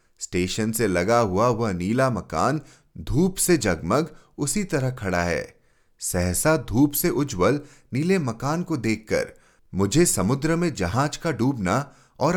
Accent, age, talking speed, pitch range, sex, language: native, 30-49, 140 wpm, 100-165 Hz, male, Hindi